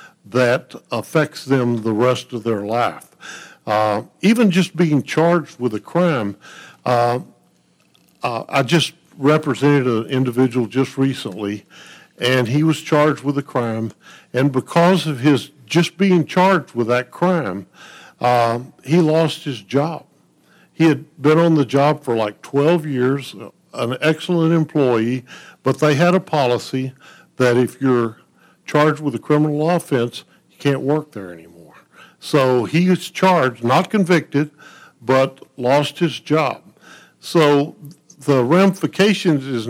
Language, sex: English, male